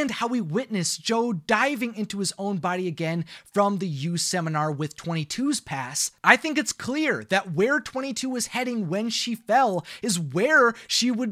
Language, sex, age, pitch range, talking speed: English, male, 30-49, 190-245 Hz, 175 wpm